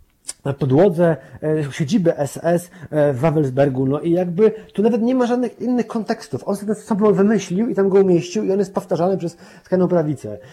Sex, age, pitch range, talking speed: male, 30-49, 150-185 Hz, 175 wpm